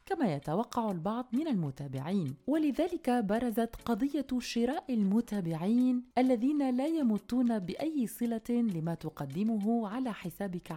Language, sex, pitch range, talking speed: Arabic, female, 180-255 Hz, 105 wpm